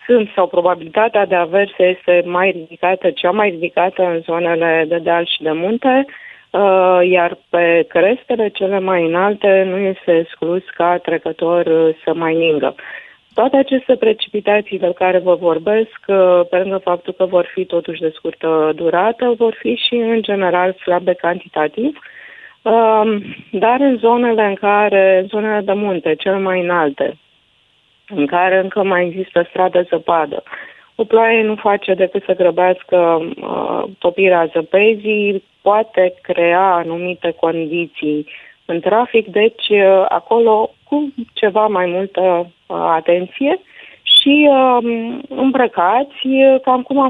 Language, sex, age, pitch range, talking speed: Romanian, female, 30-49, 175-225 Hz, 125 wpm